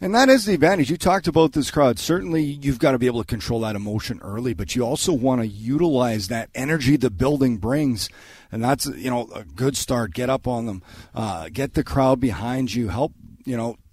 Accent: American